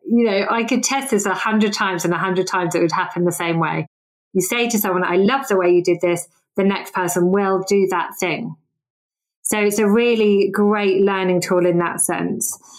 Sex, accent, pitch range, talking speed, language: female, British, 175-205 Hz, 220 wpm, English